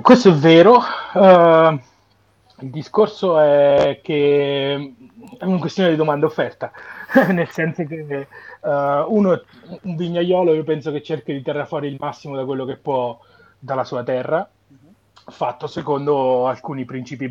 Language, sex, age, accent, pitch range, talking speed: Italian, male, 30-49, native, 125-155 Hz, 145 wpm